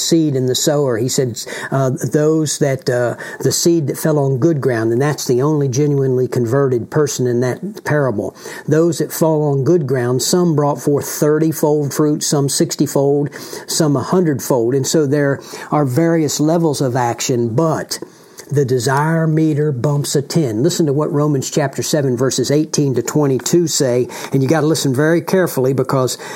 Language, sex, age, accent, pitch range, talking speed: English, male, 60-79, American, 135-160 Hz, 180 wpm